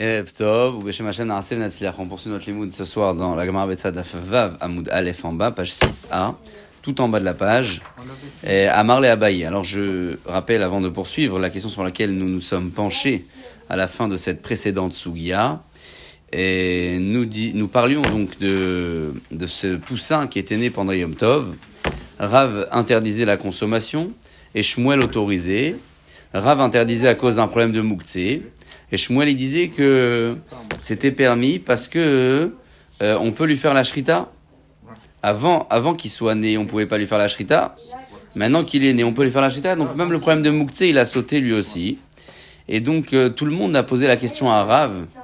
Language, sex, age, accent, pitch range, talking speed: French, male, 40-59, French, 95-135 Hz, 195 wpm